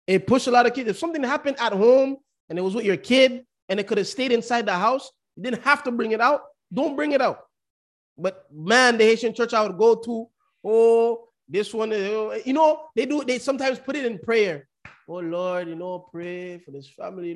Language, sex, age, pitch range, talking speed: English, male, 20-39, 195-275 Hz, 230 wpm